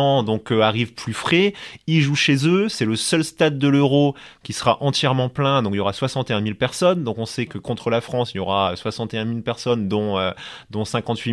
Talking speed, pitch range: 230 wpm, 105-130 Hz